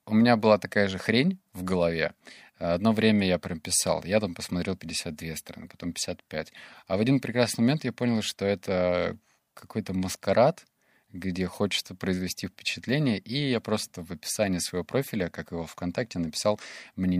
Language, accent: Russian, native